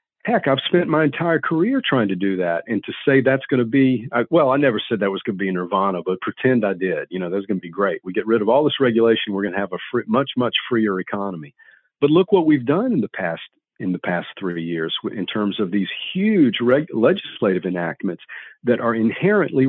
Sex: male